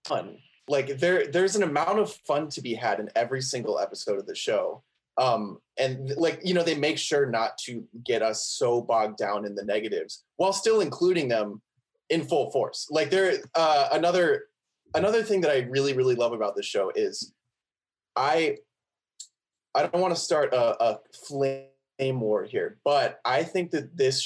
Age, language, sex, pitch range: 20-39, English, male, 130-195 Hz